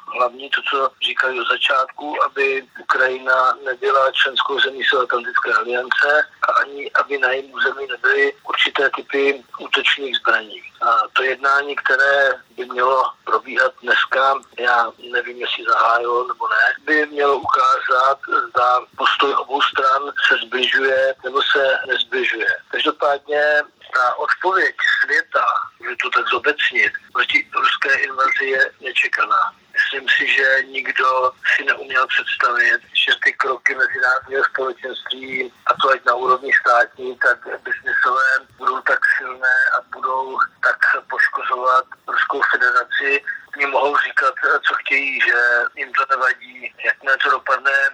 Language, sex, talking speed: Slovak, male, 130 wpm